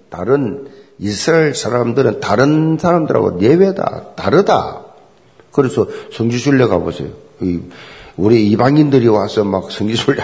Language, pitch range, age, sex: Korean, 120-195 Hz, 50-69, male